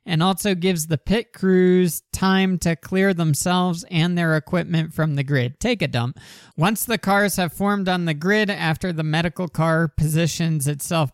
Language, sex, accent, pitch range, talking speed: English, male, American, 155-190 Hz, 180 wpm